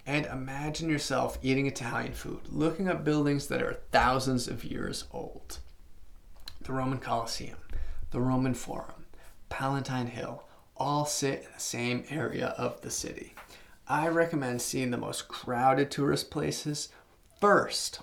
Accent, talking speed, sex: American, 135 wpm, male